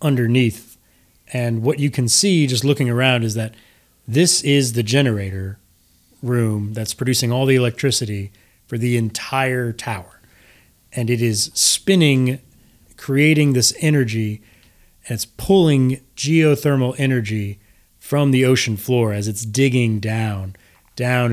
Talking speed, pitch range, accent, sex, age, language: 130 wpm, 110-140 Hz, American, male, 30-49, English